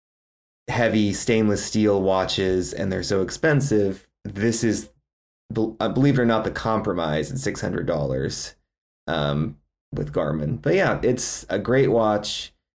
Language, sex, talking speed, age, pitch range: English, male, 130 wpm, 30-49, 95-110 Hz